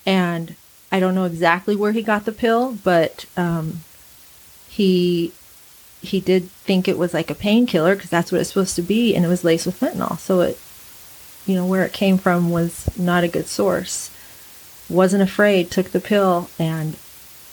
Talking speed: 180 wpm